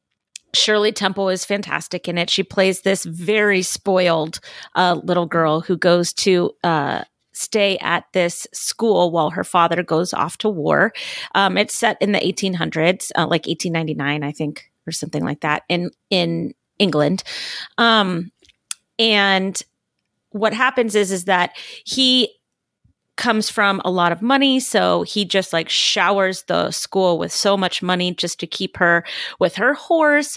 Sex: female